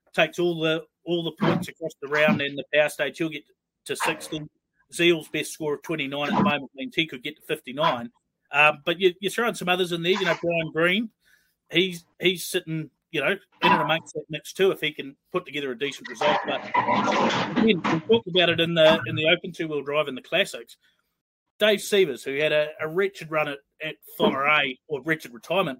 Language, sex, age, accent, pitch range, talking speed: English, male, 30-49, Australian, 150-185 Hz, 220 wpm